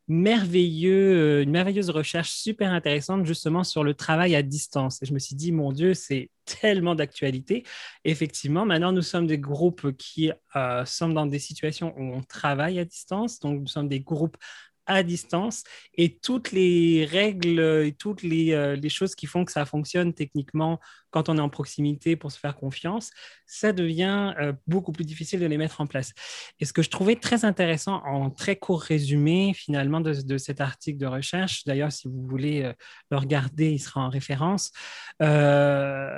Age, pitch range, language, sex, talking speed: 20-39, 145-180 Hz, French, male, 185 wpm